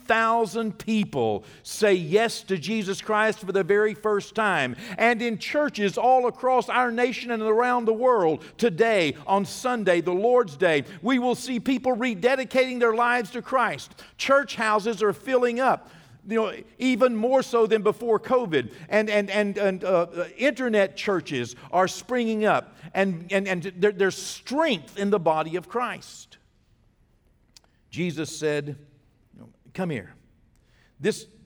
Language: English